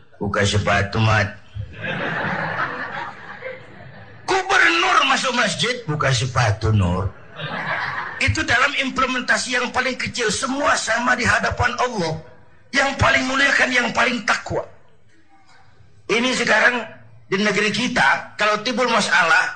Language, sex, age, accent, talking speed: Indonesian, male, 50-69, native, 105 wpm